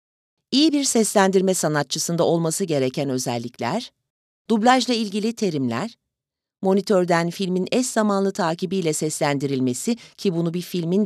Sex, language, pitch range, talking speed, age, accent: female, Turkish, 155-215 Hz, 110 wpm, 40-59, native